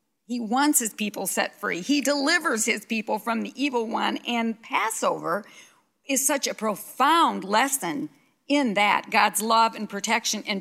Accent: American